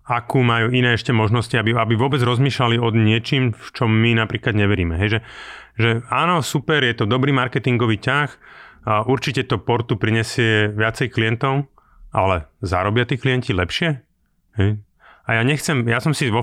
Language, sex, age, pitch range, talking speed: Slovak, male, 30-49, 105-130 Hz, 170 wpm